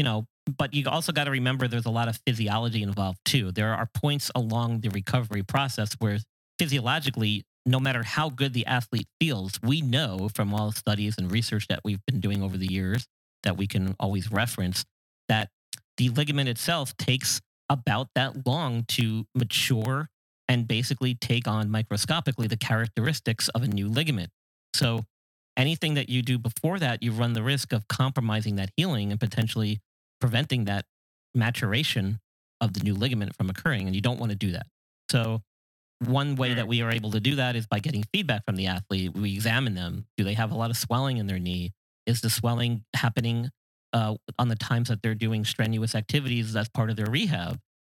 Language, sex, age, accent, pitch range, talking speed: English, male, 40-59, American, 105-130 Hz, 190 wpm